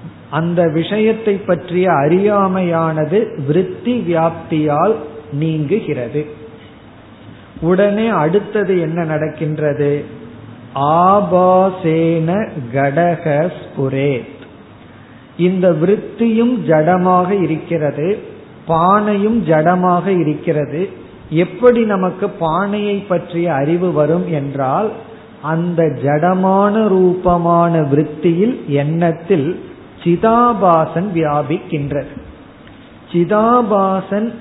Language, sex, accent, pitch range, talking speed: Tamil, male, native, 150-195 Hz, 55 wpm